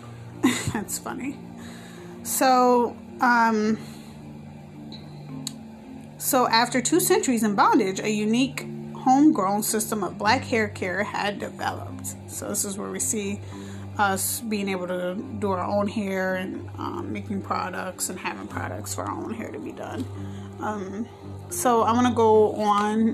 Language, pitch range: English, 185-230 Hz